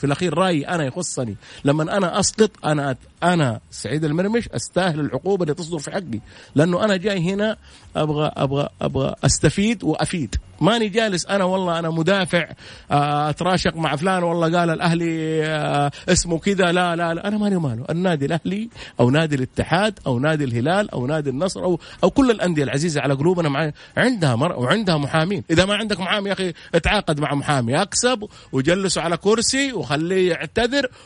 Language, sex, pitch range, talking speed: Arabic, male, 145-195 Hz, 170 wpm